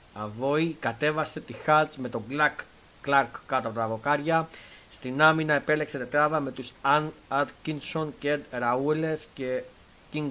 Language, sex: Greek, male